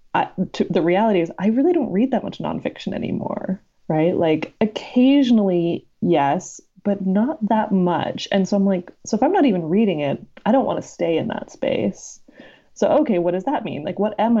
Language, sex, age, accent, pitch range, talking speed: English, female, 20-39, American, 170-225 Hz, 195 wpm